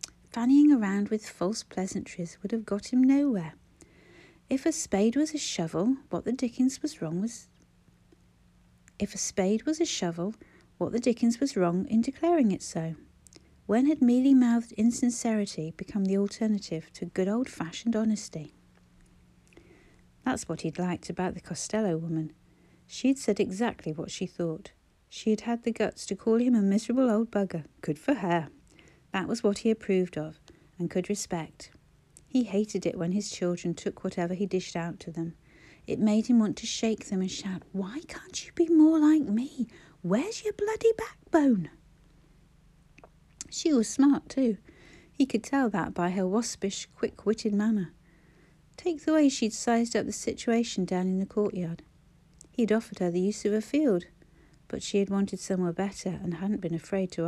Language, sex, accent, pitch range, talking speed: English, female, British, 170-235 Hz, 170 wpm